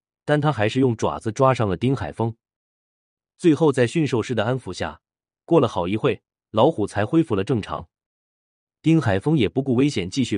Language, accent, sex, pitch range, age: Chinese, native, male, 95-135 Hz, 30-49